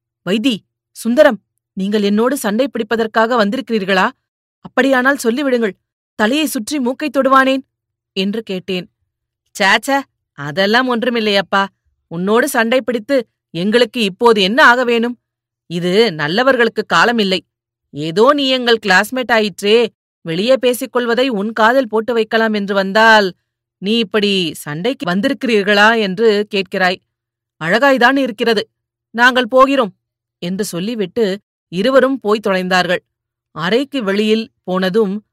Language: Tamil